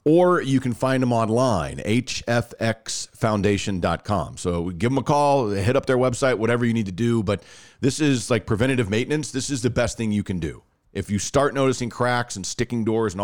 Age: 40-59